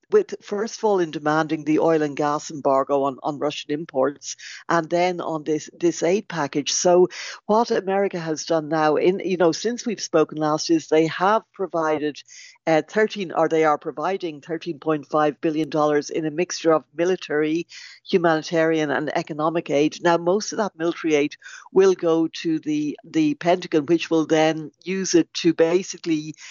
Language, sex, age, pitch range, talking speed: English, female, 60-79, 155-185 Hz, 170 wpm